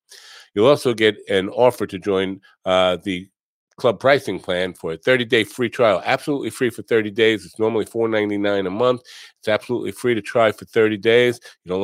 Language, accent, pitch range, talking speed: English, American, 95-120 Hz, 190 wpm